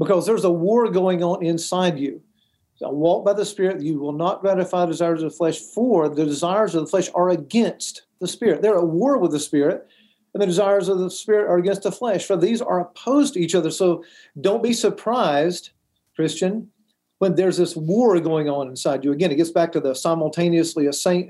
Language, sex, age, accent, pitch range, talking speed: English, male, 50-69, American, 155-190 Hz, 215 wpm